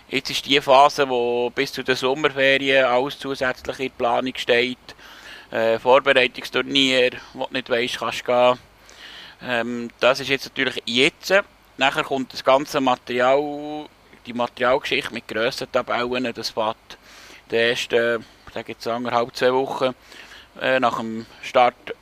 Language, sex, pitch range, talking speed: German, male, 120-140 Hz, 145 wpm